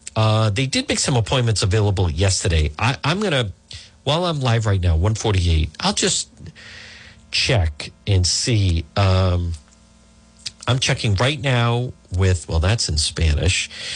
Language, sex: English, male